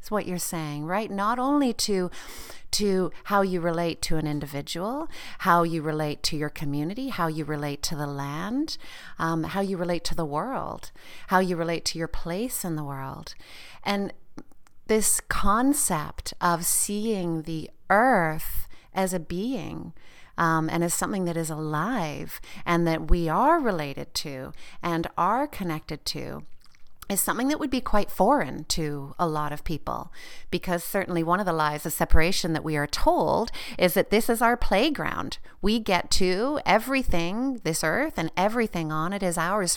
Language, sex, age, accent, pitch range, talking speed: English, female, 40-59, American, 160-200 Hz, 165 wpm